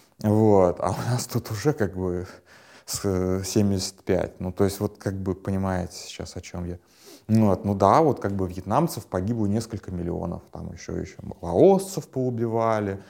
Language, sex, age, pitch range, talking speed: Russian, male, 30-49, 95-120 Hz, 160 wpm